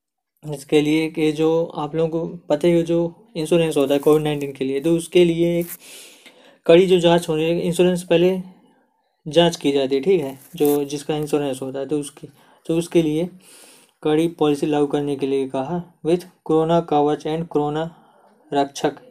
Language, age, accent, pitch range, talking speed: Hindi, 20-39, native, 150-170 Hz, 180 wpm